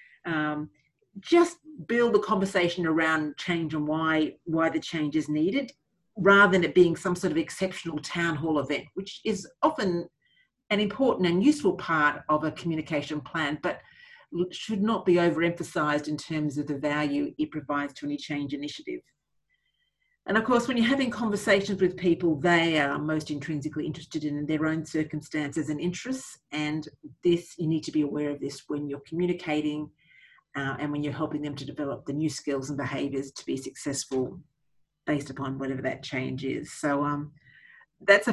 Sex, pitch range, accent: female, 150-205 Hz, Australian